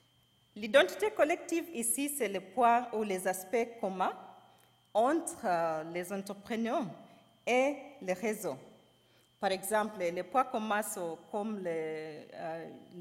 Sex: female